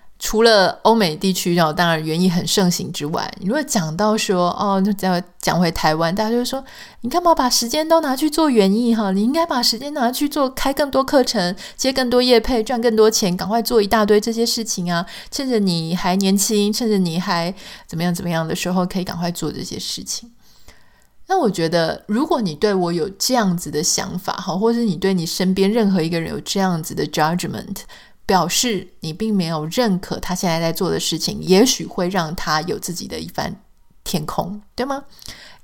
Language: Chinese